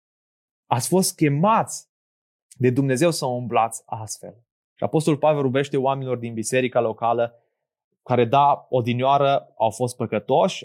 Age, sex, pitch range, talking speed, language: 20-39, male, 120-155 Hz, 125 wpm, Romanian